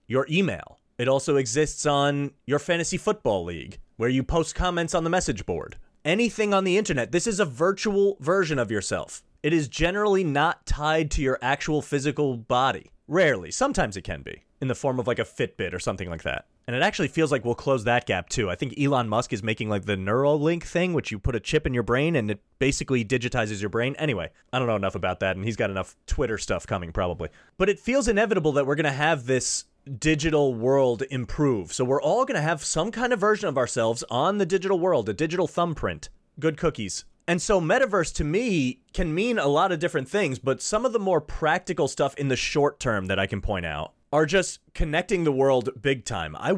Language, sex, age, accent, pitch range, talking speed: English, male, 30-49, American, 120-175 Hz, 225 wpm